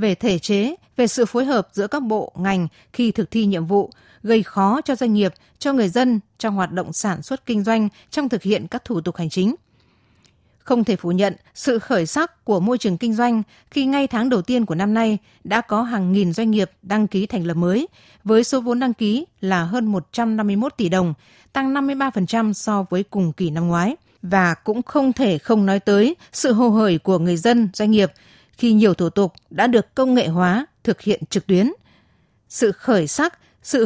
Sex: female